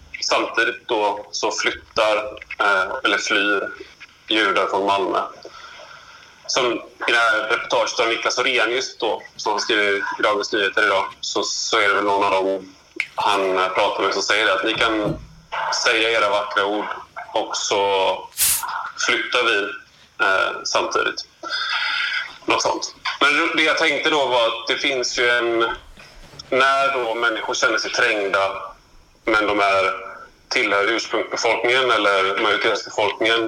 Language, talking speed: Swedish, 140 wpm